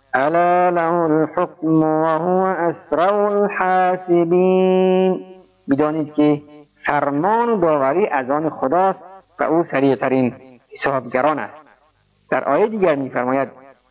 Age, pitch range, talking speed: 50-69, 150-185 Hz, 90 wpm